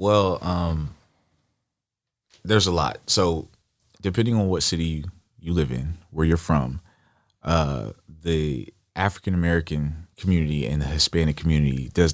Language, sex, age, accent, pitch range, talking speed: English, male, 30-49, American, 75-90 Hz, 130 wpm